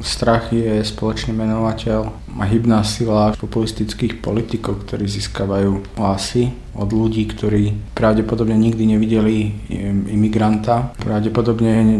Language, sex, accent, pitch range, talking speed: Czech, male, native, 105-120 Hz, 100 wpm